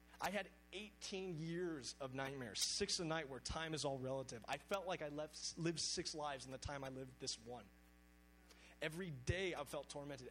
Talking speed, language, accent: 190 wpm, English, American